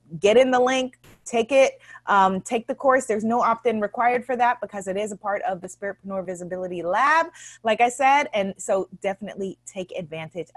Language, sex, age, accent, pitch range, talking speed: English, female, 30-49, American, 185-260 Hz, 195 wpm